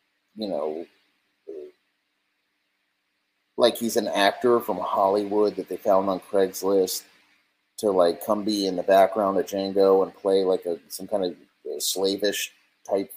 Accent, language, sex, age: American, English, male, 30-49